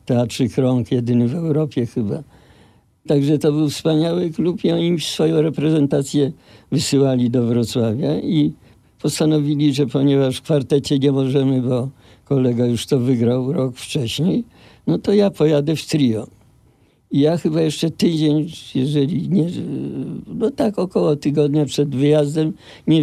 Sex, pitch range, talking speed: male, 130-160 Hz, 140 wpm